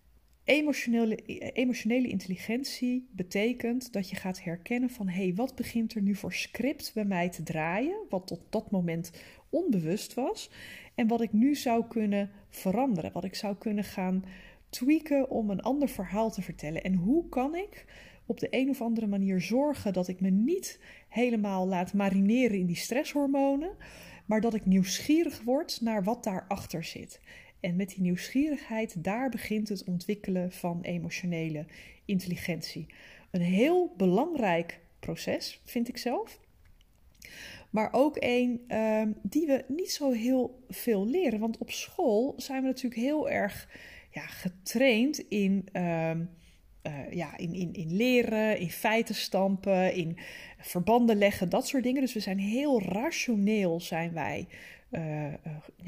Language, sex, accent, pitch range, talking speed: Dutch, female, Dutch, 185-250 Hz, 150 wpm